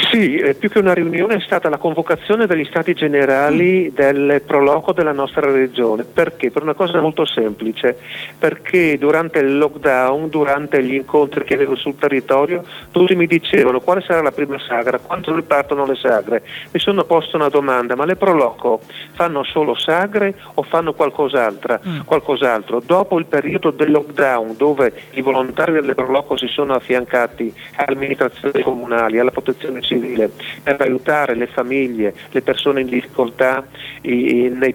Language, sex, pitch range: Italian, male, 130-160 Hz